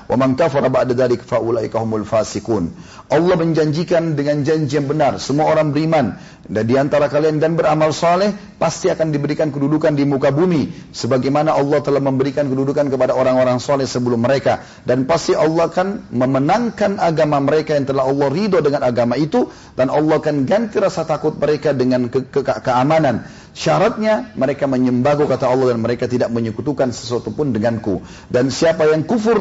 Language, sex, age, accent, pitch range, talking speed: Indonesian, male, 40-59, native, 125-155 Hz, 165 wpm